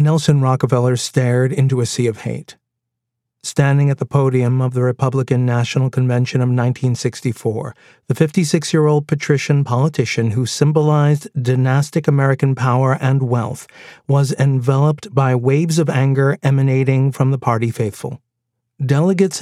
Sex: male